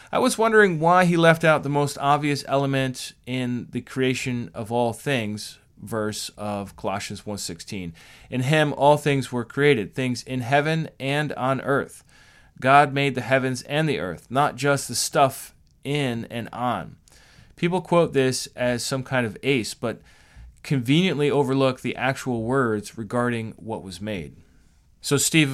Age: 30-49